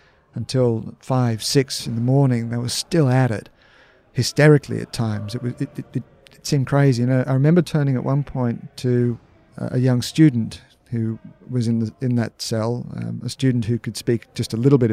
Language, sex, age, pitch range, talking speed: English, male, 40-59, 115-140 Hz, 195 wpm